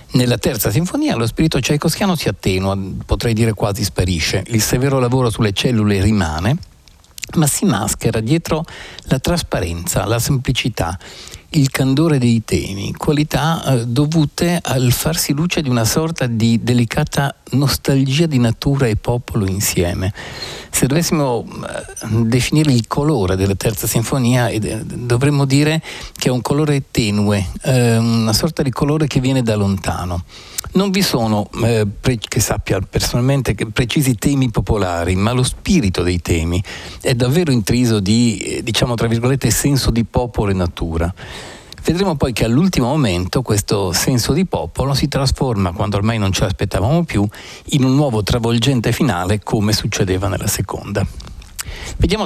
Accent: native